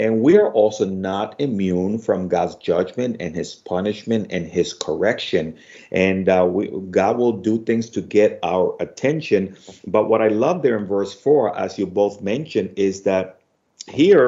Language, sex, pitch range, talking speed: English, male, 95-115 Hz, 170 wpm